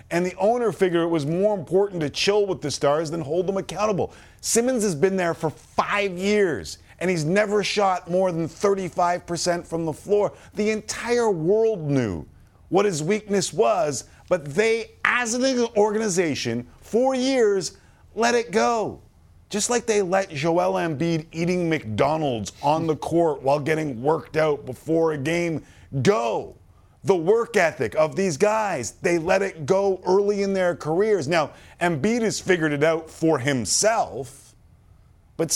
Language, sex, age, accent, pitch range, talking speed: English, male, 40-59, American, 125-195 Hz, 160 wpm